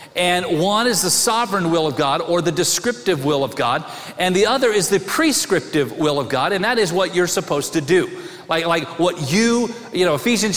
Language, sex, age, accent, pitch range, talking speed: English, male, 40-59, American, 180-225 Hz, 215 wpm